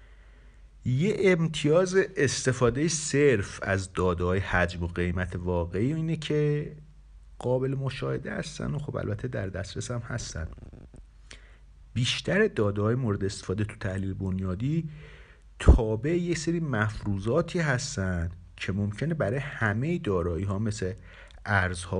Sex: male